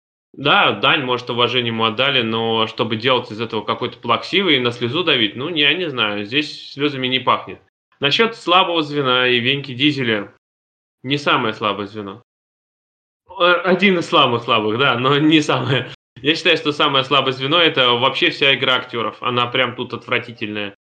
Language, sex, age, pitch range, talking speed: Russian, male, 20-39, 125-170 Hz, 170 wpm